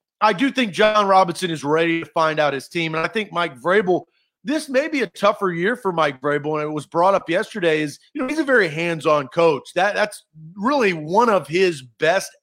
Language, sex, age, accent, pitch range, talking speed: English, male, 40-59, American, 160-210 Hz, 225 wpm